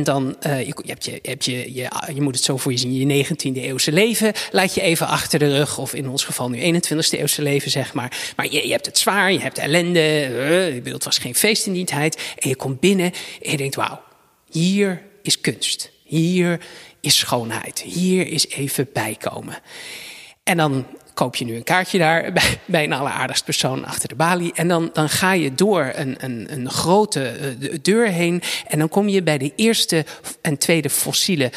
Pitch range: 140-185 Hz